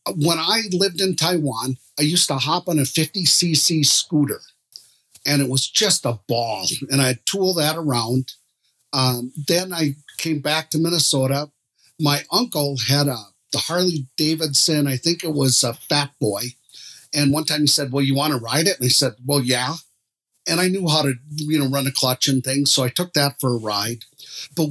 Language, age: English, 50-69